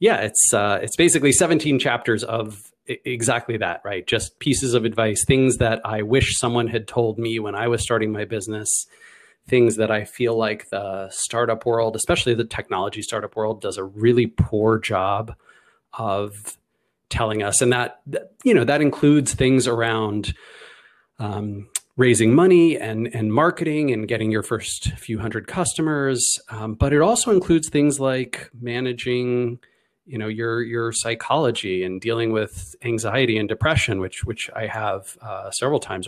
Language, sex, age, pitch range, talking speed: English, male, 30-49, 110-125 Hz, 165 wpm